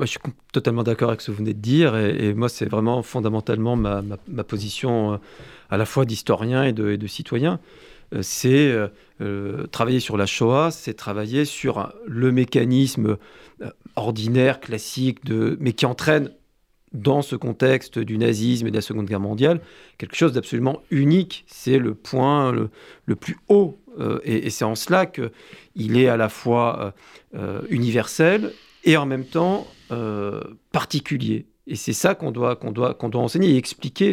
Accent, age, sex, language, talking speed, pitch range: French, 40-59, male, French, 185 wpm, 110-145 Hz